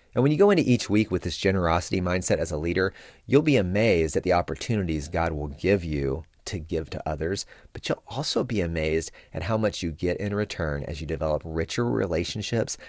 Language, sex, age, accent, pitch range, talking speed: English, male, 30-49, American, 85-135 Hz, 210 wpm